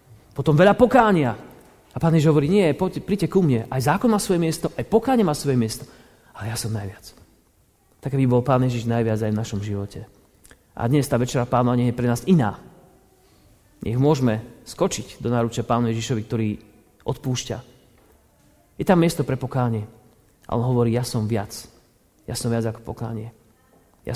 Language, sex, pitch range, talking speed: Slovak, male, 110-135 Hz, 170 wpm